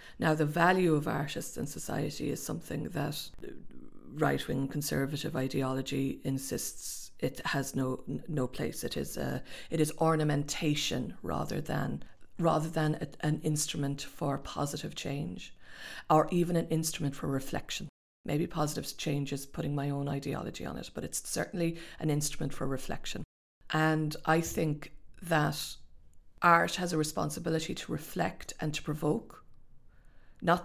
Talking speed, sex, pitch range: 145 wpm, female, 145-165 Hz